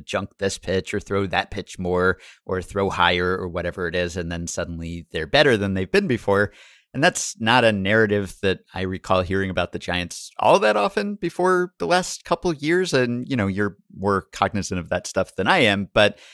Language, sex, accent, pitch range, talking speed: English, male, American, 95-110 Hz, 210 wpm